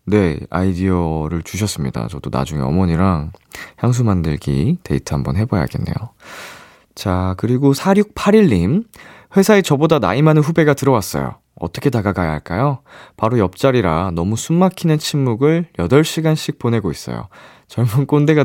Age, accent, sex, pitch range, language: 20-39, native, male, 90-150 Hz, Korean